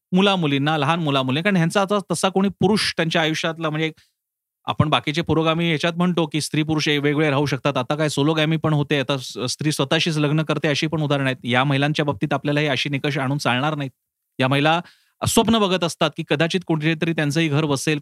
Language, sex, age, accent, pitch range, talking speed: Marathi, male, 30-49, native, 145-190 Hz, 95 wpm